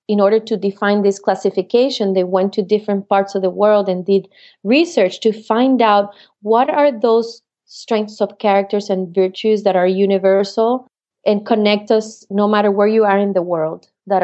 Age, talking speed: 30-49, 180 wpm